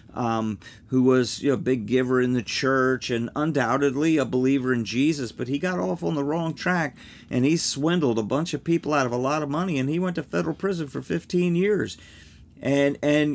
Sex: male